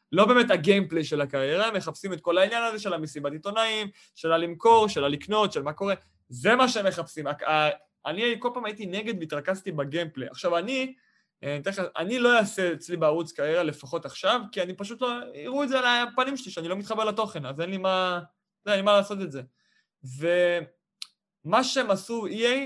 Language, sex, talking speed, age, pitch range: Hebrew, male, 190 wpm, 20-39, 165-240 Hz